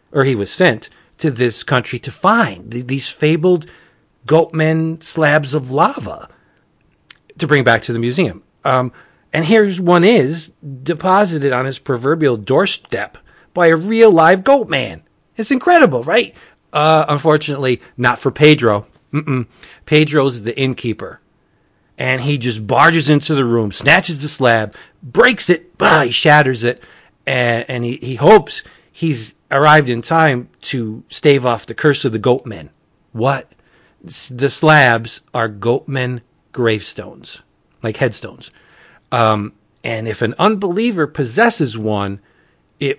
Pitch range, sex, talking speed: 120-160 Hz, male, 135 wpm